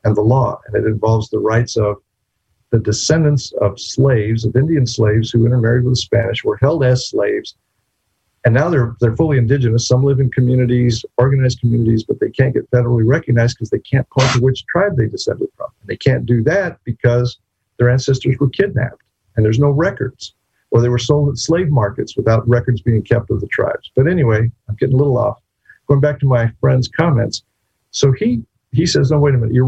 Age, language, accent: 50-69, English, American